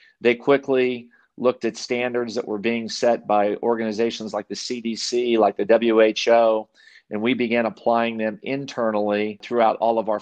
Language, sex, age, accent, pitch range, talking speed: English, male, 40-59, American, 110-120 Hz, 160 wpm